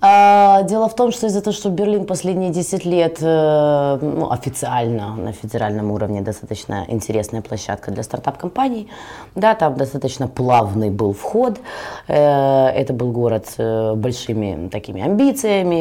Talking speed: 130 wpm